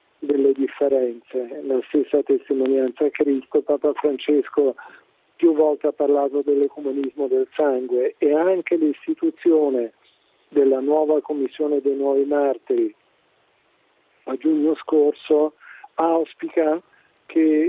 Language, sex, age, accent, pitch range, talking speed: Italian, male, 50-69, native, 140-155 Hz, 100 wpm